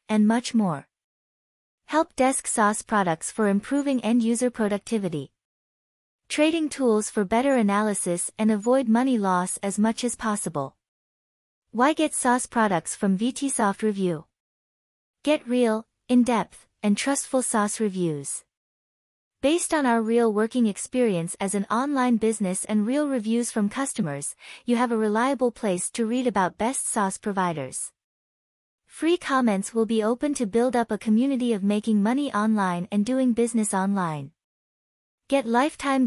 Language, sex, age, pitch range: English, female, 30-49, 200-250 Hz